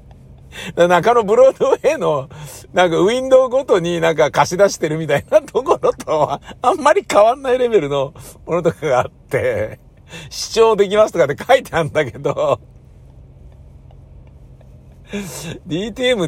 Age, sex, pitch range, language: 60-79, male, 105-170 Hz, Japanese